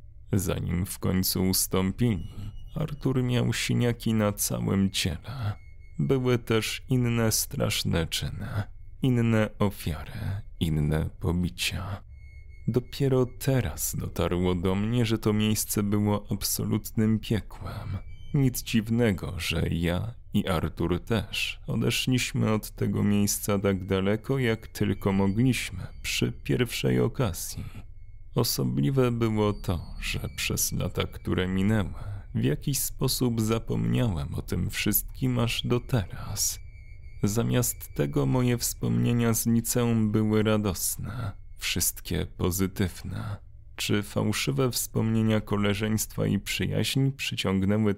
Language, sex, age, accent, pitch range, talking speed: Polish, male, 30-49, native, 95-115 Hz, 105 wpm